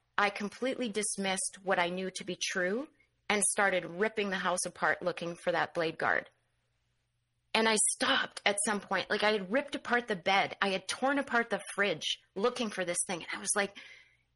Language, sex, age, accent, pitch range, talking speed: English, female, 30-49, American, 175-245 Hz, 195 wpm